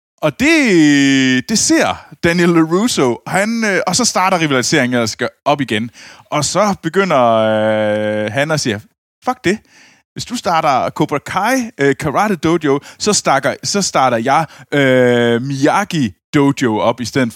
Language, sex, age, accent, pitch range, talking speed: Danish, male, 20-39, native, 120-175 Hz, 150 wpm